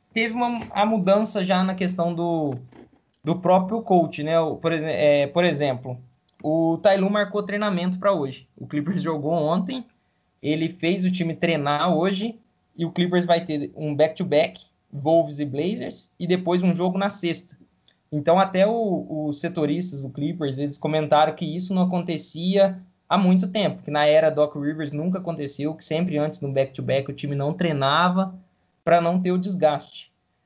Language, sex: Portuguese, male